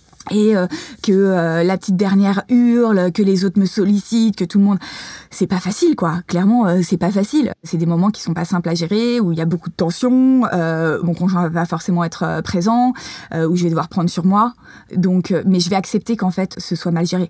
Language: French